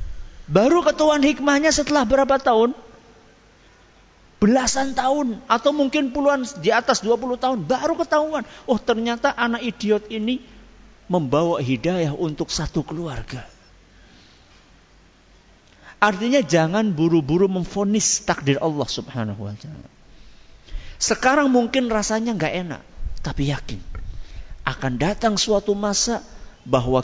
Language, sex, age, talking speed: Malay, male, 50-69, 105 wpm